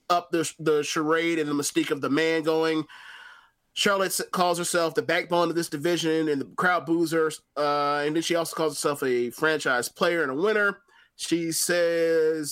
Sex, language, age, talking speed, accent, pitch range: male, English, 20-39, 180 wpm, American, 150-175 Hz